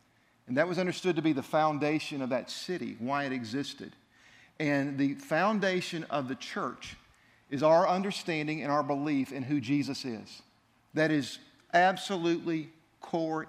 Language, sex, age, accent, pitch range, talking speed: English, male, 50-69, American, 130-165 Hz, 150 wpm